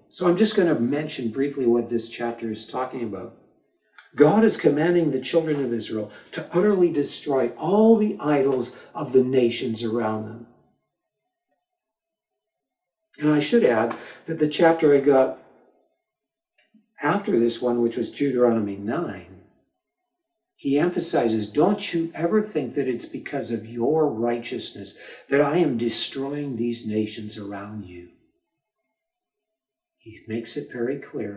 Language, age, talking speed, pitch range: English, 60-79, 140 wpm, 115-160 Hz